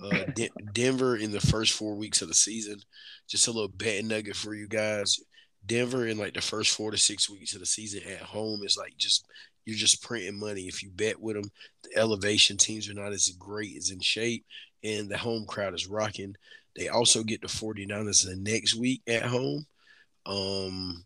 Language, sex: English, male